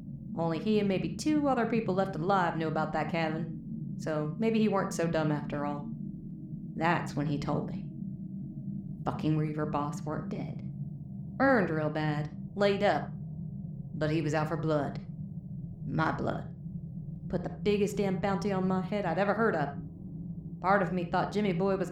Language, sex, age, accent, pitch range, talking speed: English, female, 30-49, American, 155-190 Hz, 170 wpm